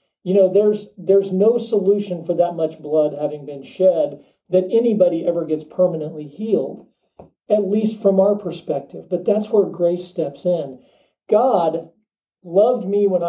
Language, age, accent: English, 40-59, American